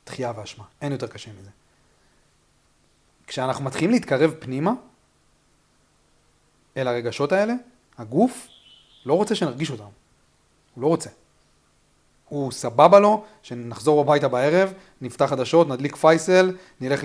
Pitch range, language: 120-165 Hz, Hebrew